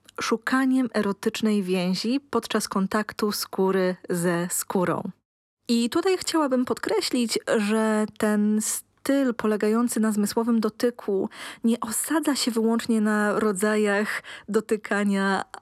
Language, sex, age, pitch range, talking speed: Polish, female, 20-39, 200-235 Hz, 100 wpm